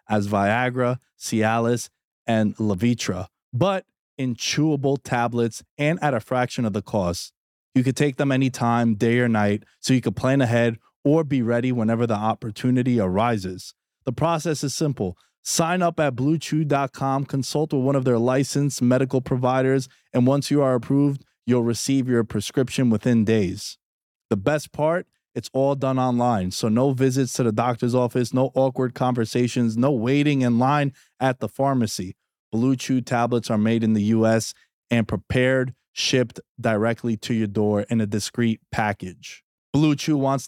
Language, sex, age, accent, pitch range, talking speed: English, male, 20-39, American, 115-135 Hz, 160 wpm